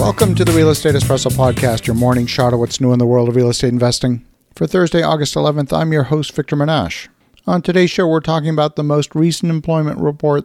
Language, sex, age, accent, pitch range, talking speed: English, male, 50-69, American, 135-165 Hz, 230 wpm